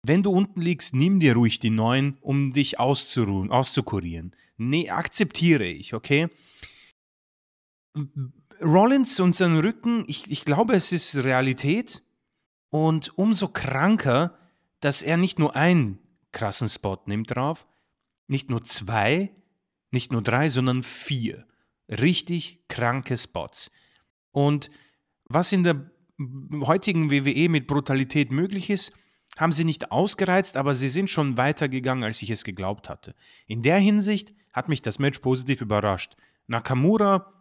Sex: male